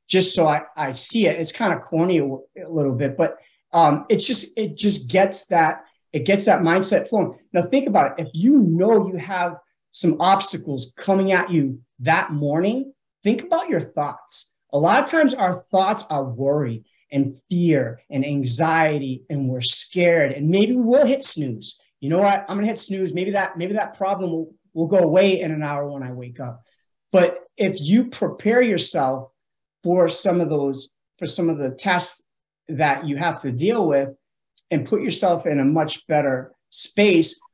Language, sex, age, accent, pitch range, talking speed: English, male, 30-49, American, 140-190 Hz, 190 wpm